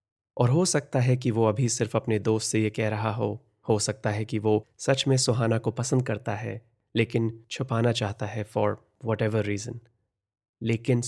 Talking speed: 190 wpm